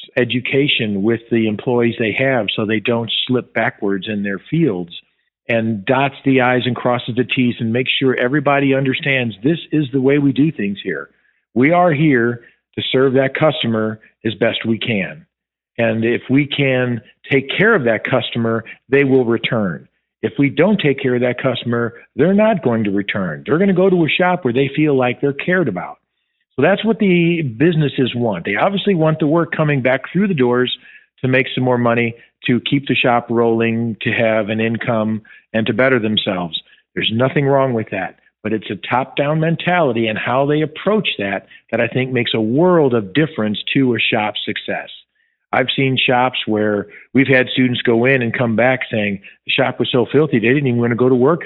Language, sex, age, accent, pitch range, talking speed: English, male, 50-69, American, 115-140 Hz, 200 wpm